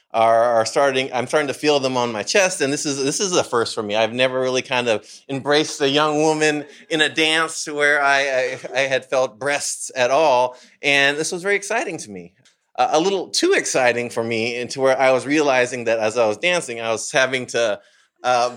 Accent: American